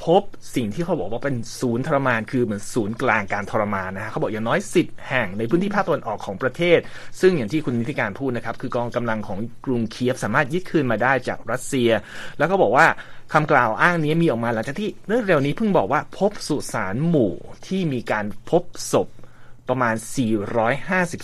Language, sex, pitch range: Thai, male, 115-155 Hz